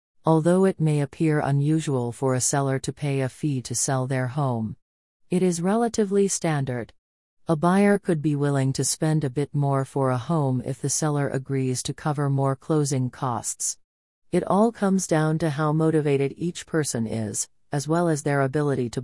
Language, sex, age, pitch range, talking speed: English, female, 40-59, 130-160 Hz, 185 wpm